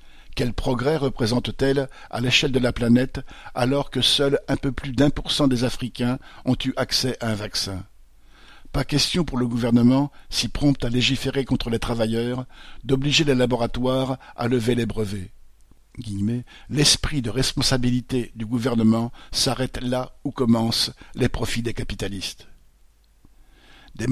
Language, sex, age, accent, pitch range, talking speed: French, male, 50-69, French, 115-135 Hz, 145 wpm